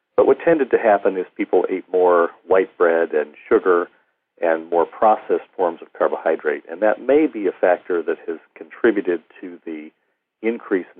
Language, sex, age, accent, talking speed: English, male, 50-69, American, 175 wpm